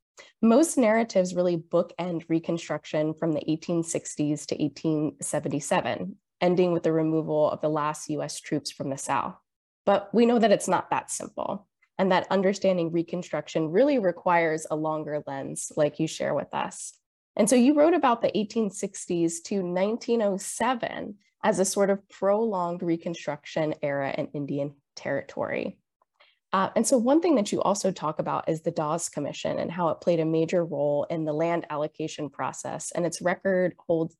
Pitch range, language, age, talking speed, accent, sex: 160-200 Hz, English, 20-39, 165 wpm, American, female